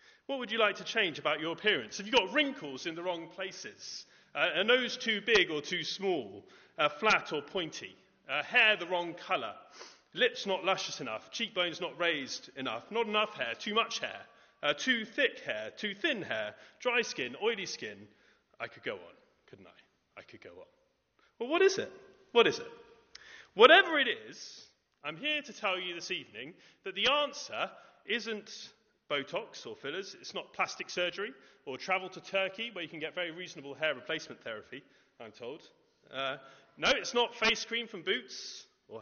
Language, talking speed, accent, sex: English, 185 wpm, British, male